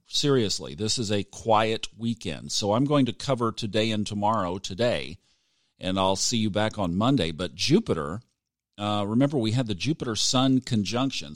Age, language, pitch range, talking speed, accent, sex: 50-69, English, 105-140 Hz, 165 wpm, American, male